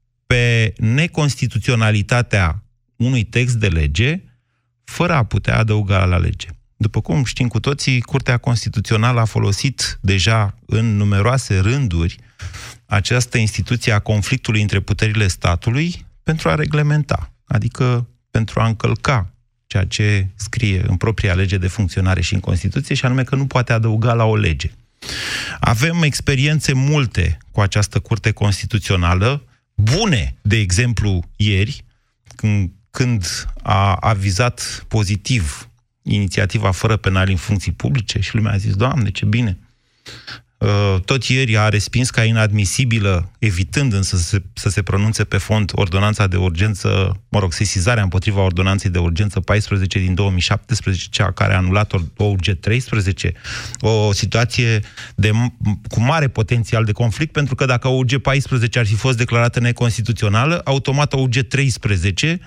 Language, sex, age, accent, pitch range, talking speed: Romanian, male, 30-49, native, 100-125 Hz, 135 wpm